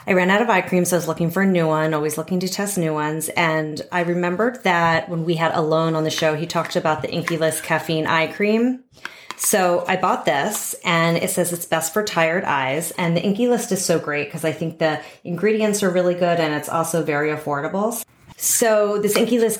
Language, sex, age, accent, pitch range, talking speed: English, female, 30-49, American, 155-185 Hz, 235 wpm